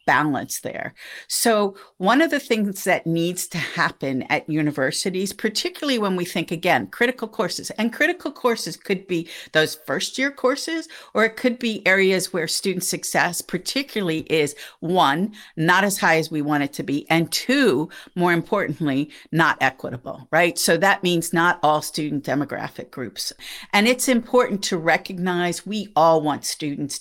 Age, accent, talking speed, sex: 50-69, American, 160 wpm, female